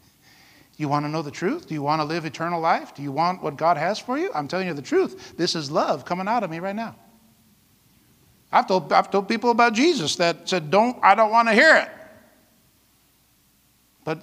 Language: English